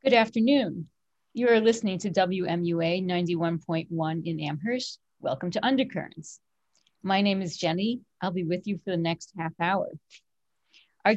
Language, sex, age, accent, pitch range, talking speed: English, female, 40-59, American, 175-215 Hz, 145 wpm